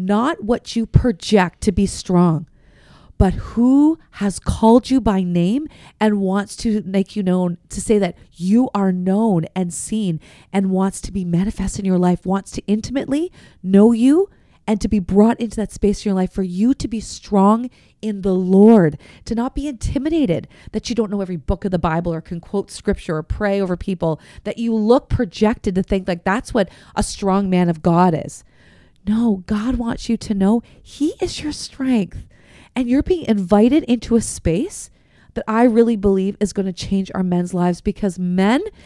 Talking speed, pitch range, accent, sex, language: 195 wpm, 190-240 Hz, American, female, English